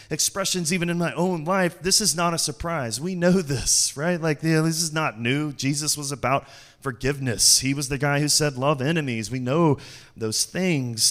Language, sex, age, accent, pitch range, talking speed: English, male, 30-49, American, 125-180 Hz, 195 wpm